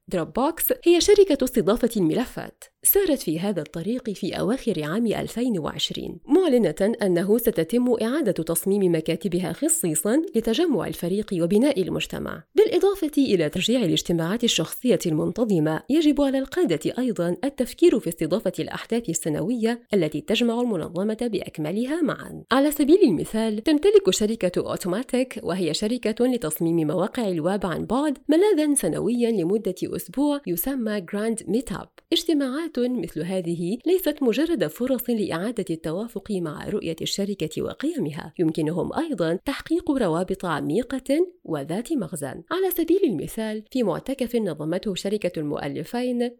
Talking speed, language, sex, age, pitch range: 115 wpm, Arabic, female, 30-49, 175-275 Hz